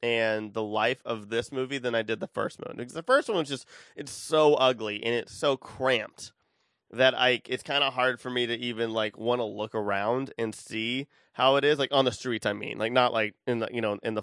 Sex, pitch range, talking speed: male, 110-135 Hz, 255 wpm